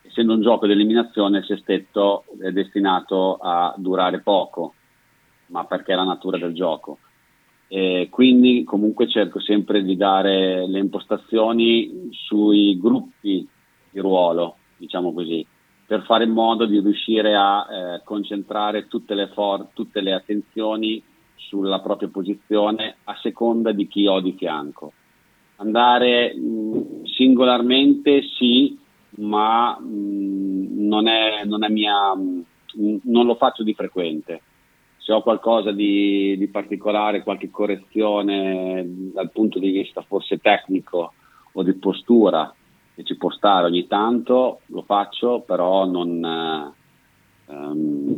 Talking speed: 125 wpm